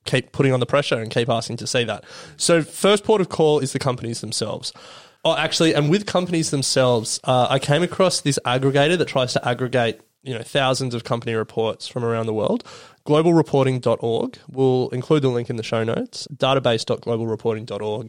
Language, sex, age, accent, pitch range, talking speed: English, male, 20-39, Australian, 115-140 Hz, 185 wpm